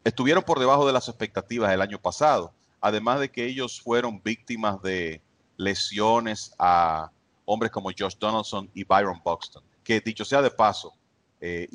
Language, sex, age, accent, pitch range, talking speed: English, male, 40-59, Venezuelan, 95-115 Hz, 160 wpm